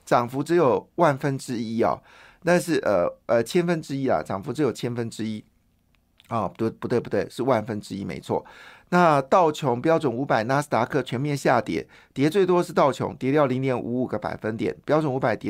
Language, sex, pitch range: Chinese, male, 110-145 Hz